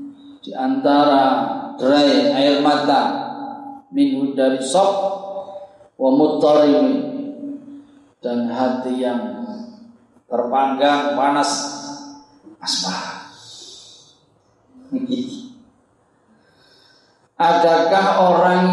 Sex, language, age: male, Indonesian, 40-59